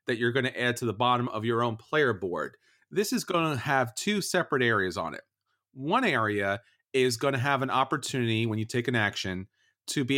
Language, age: English, 40-59